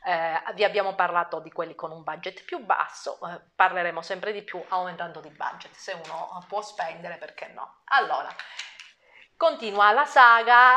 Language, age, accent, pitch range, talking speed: Italian, 30-49, native, 170-260 Hz, 160 wpm